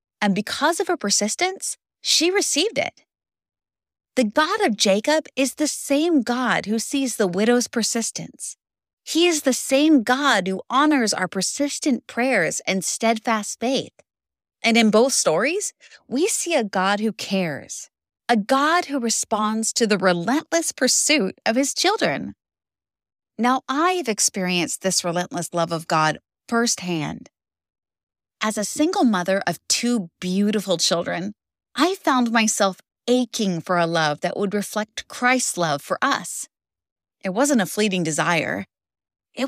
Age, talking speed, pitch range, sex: 30-49, 140 wpm, 180-265 Hz, female